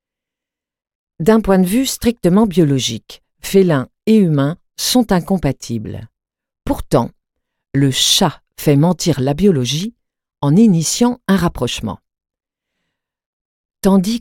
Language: French